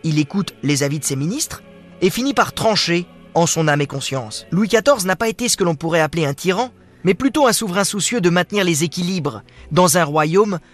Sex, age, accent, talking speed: male, 20-39, French, 225 wpm